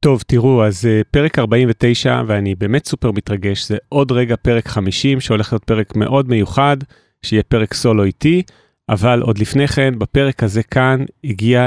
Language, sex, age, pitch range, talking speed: Hebrew, male, 30-49, 110-135 Hz, 155 wpm